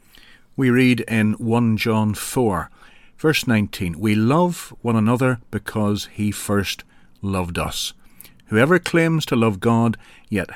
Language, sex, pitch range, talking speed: English, male, 100-125 Hz, 130 wpm